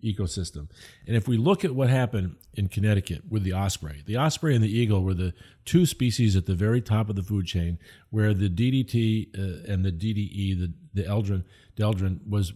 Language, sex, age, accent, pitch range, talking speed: English, male, 50-69, American, 95-115 Hz, 200 wpm